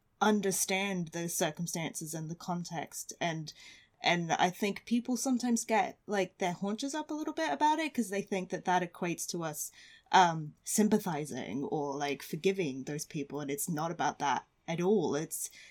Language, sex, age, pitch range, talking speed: English, female, 20-39, 165-200 Hz, 170 wpm